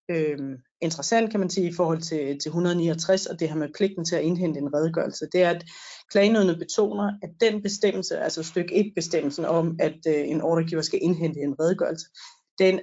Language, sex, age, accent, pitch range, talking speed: Danish, female, 30-49, native, 170-205 Hz, 195 wpm